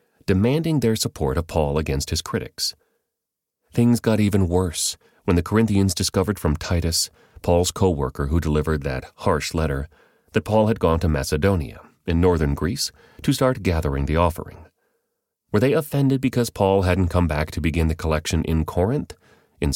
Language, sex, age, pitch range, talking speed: English, male, 40-59, 80-100 Hz, 165 wpm